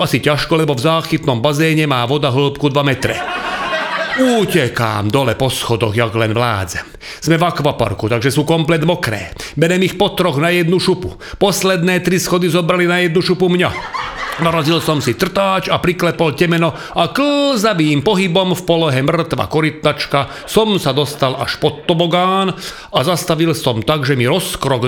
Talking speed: 160 wpm